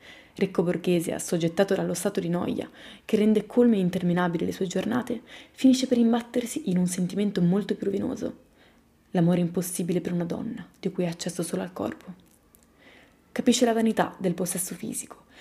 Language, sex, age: Italian, female, 20-39